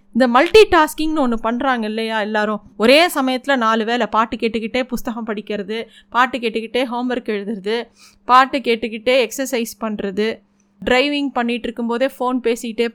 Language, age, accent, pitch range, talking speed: Tamil, 20-39, native, 220-285 Hz, 130 wpm